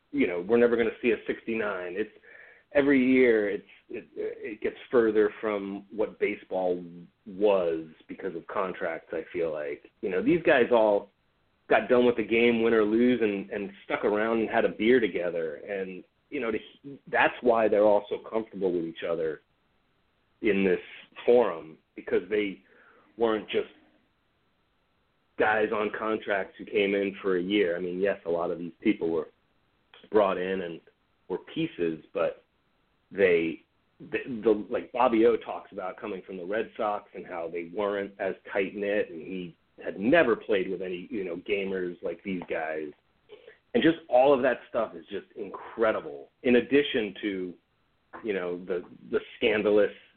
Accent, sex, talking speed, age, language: American, male, 170 wpm, 30-49, English